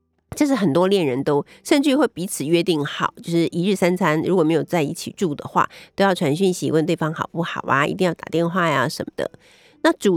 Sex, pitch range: female, 150-205 Hz